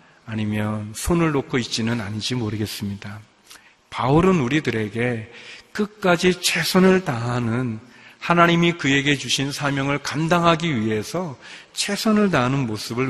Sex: male